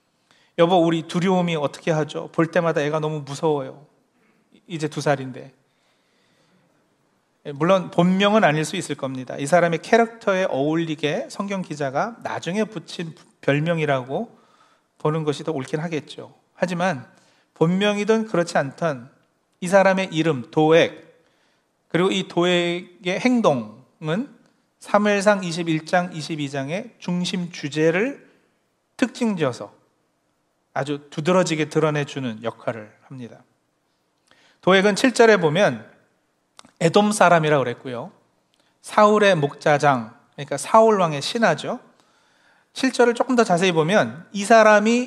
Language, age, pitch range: Korean, 40-59, 150-210 Hz